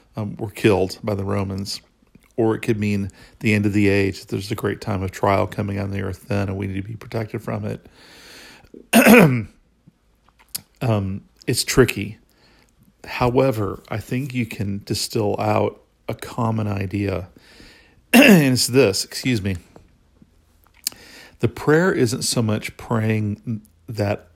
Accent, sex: American, male